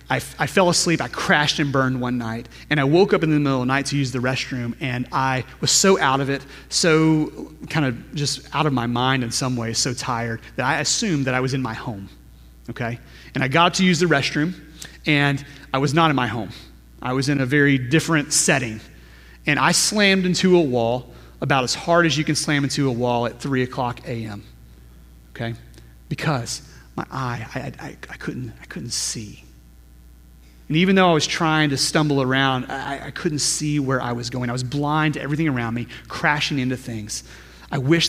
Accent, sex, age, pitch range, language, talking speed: American, male, 30-49, 105-150 Hz, English, 215 wpm